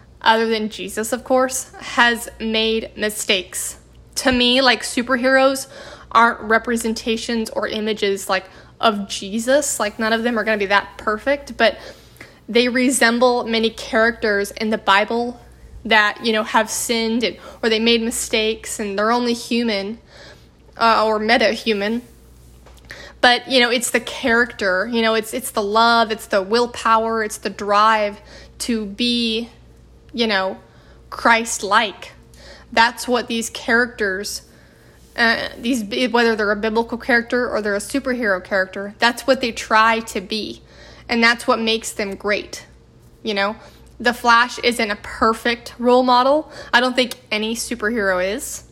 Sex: female